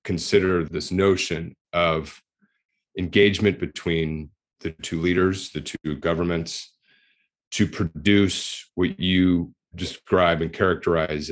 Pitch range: 75-90 Hz